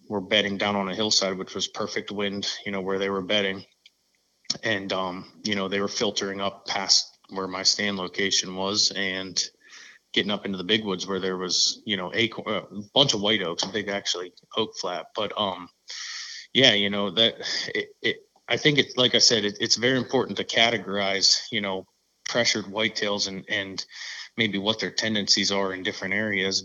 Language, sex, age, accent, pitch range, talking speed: English, male, 20-39, American, 100-110 Hz, 195 wpm